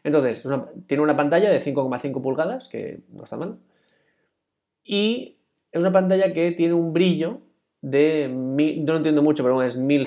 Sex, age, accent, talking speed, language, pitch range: male, 20-39, Spanish, 160 wpm, Spanish, 125-150 Hz